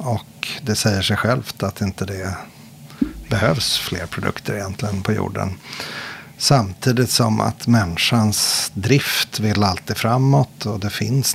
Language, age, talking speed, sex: Swedish, 50-69, 130 wpm, male